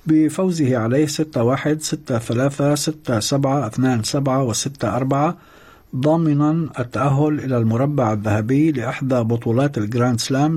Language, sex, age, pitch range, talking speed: Arabic, male, 60-79, 120-150 Hz, 120 wpm